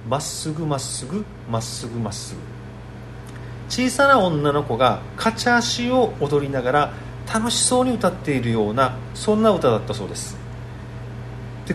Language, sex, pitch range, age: Japanese, male, 105-170 Hz, 40-59